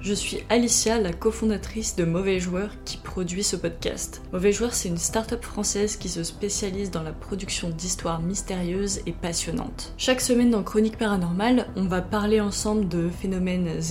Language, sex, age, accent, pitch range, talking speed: English, female, 20-39, French, 185-215 Hz, 170 wpm